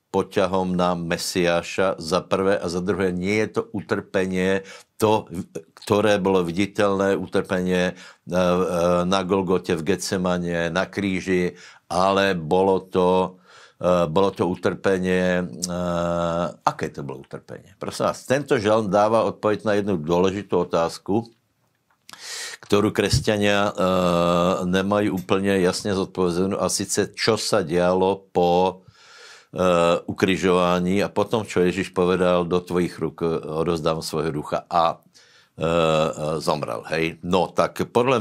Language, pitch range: Slovak, 90-100 Hz